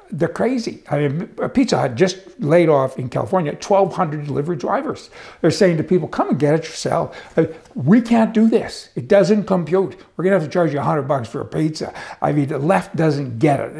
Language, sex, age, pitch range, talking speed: English, male, 60-79, 140-190 Hz, 215 wpm